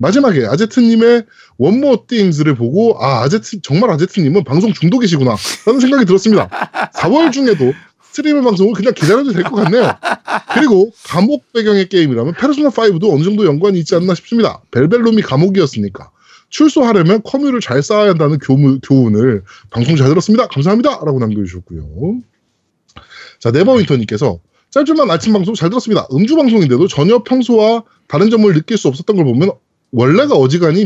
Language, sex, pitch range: Korean, male, 160-235 Hz